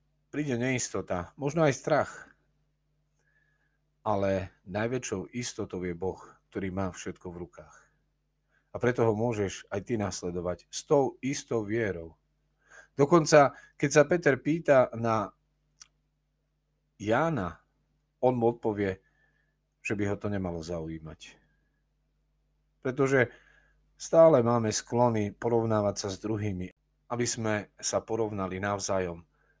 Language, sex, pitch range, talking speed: Slovak, male, 95-125 Hz, 110 wpm